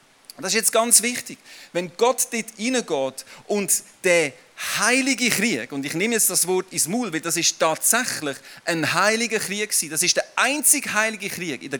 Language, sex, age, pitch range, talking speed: German, male, 40-59, 180-235 Hz, 185 wpm